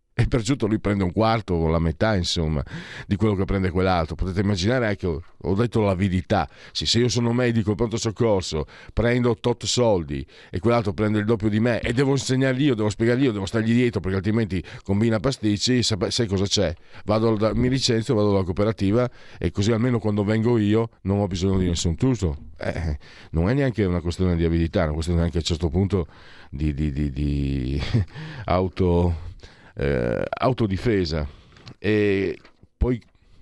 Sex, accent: male, native